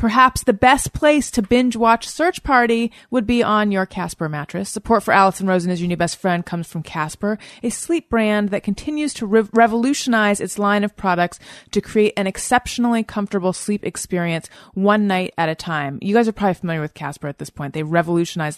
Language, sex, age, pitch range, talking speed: English, female, 30-49, 165-220 Hz, 200 wpm